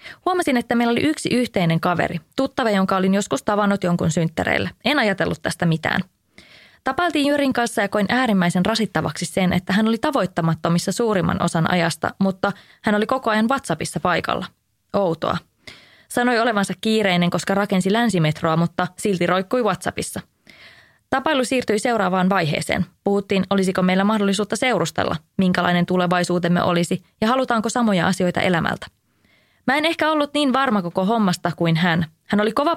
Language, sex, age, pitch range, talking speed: English, female, 20-39, 180-235 Hz, 150 wpm